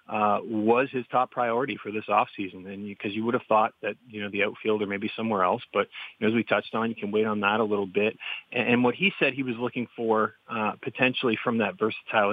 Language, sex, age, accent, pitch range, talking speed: English, male, 30-49, American, 100-115 Hz, 260 wpm